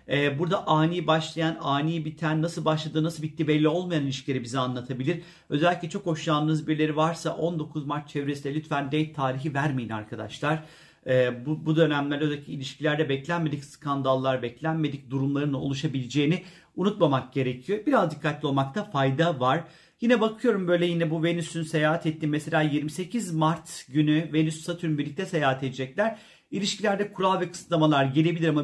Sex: male